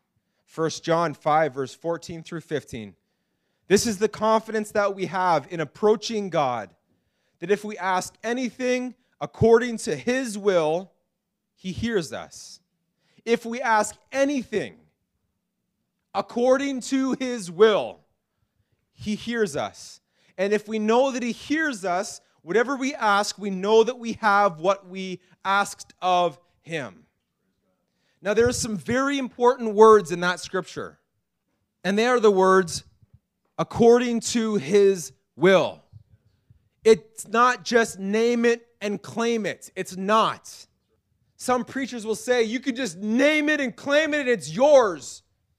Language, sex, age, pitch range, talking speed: English, male, 30-49, 180-240 Hz, 140 wpm